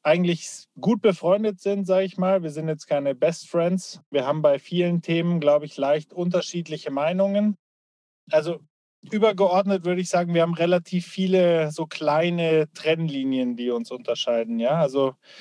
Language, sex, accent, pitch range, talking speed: German, male, German, 145-175 Hz, 150 wpm